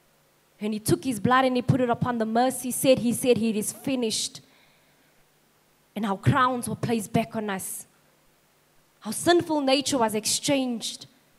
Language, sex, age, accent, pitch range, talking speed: English, female, 20-39, Malaysian, 215-260 Hz, 165 wpm